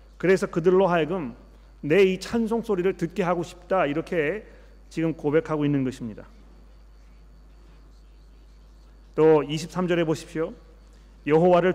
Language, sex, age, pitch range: Korean, male, 40-59, 145-185 Hz